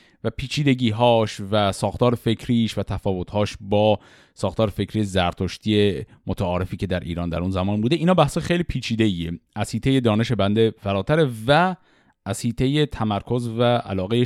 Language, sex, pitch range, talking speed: Persian, male, 105-160 Hz, 155 wpm